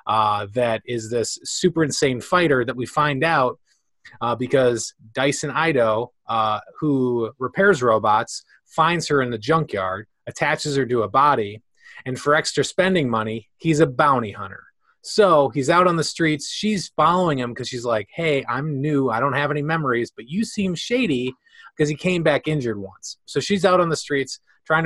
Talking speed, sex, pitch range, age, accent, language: 180 wpm, male, 120-155 Hz, 20-39, American, English